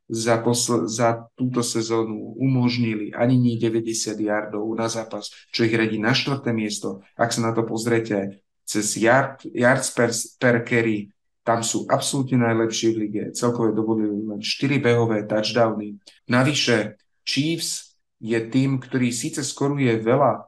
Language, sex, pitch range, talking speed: Slovak, male, 110-125 Hz, 135 wpm